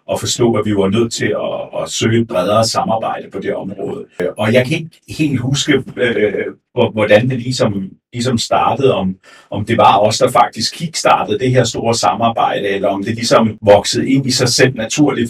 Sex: male